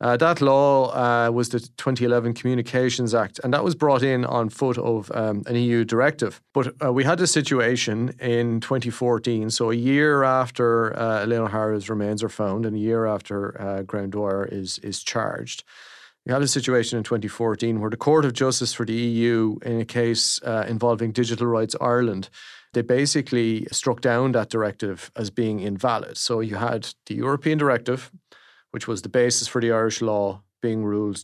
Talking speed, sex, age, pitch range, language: 185 wpm, male, 30-49, 110-125 Hz, English